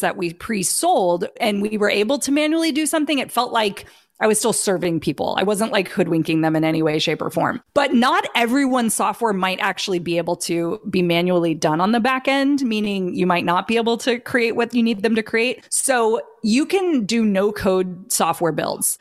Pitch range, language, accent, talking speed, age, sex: 175-230 Hz, English, American, 210 wpm, 30-49, female